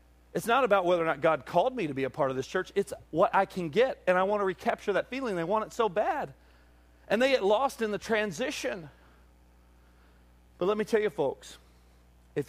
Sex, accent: male, American